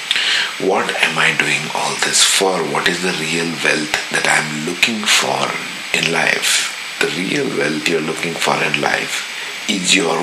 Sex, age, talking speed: male, 50-69, 175 wpm